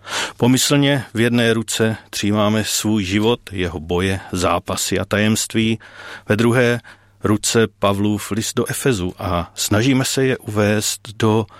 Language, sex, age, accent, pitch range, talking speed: Czech, male, 40-59, native, 95-120 Hz, 130 wpm